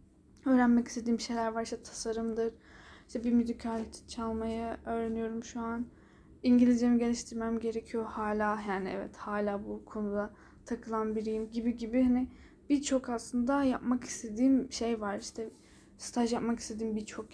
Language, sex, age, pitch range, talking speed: Turkish, female, 10-29, 225-255 Hz, 135 wpm